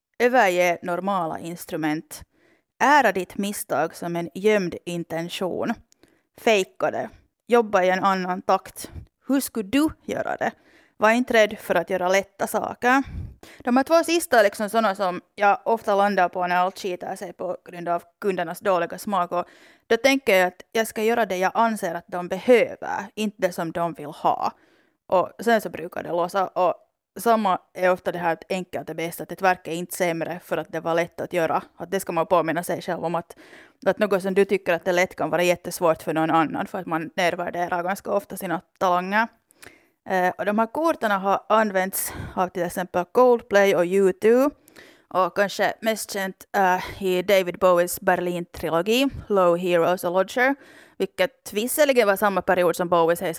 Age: 30-49